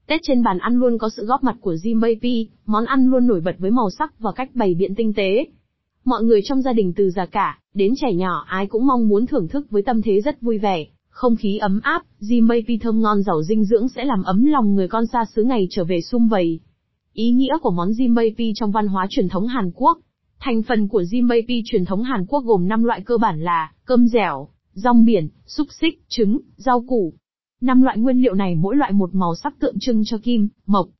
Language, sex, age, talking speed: Vietnamese, female, 20-39, 240 wpm